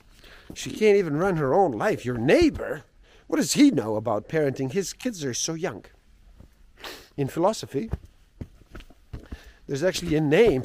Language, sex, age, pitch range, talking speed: English, male, 50-69, 115-180 Hz, 145 wpm